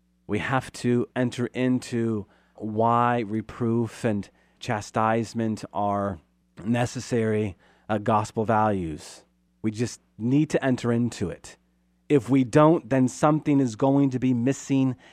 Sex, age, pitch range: male, 30-49, 110-150 Hz